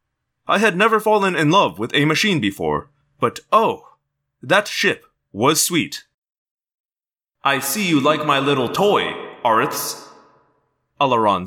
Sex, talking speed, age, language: male, 130 wpm, 30-49, English